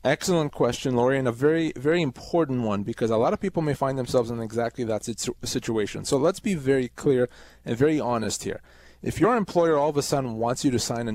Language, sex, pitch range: English, male, 125-165 Hz